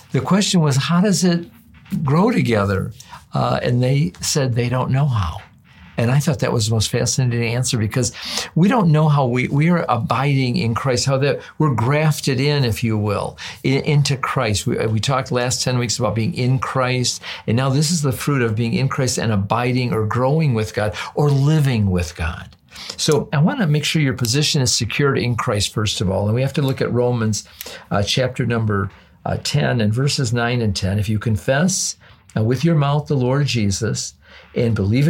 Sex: male